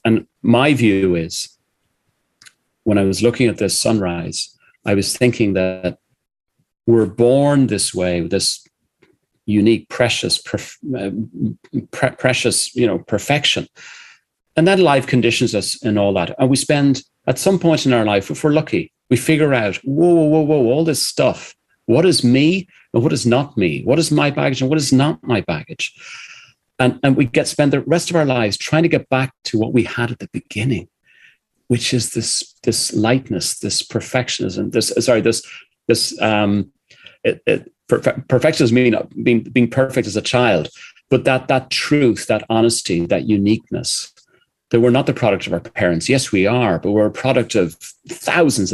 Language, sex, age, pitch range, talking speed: English, male, 40-59, 105-140 Hz, 175 wpm